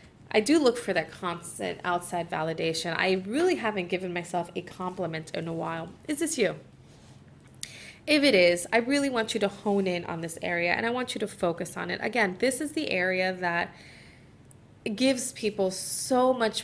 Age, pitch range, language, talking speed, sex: 20-39, 180-235 Hz, English, 190 wpm, female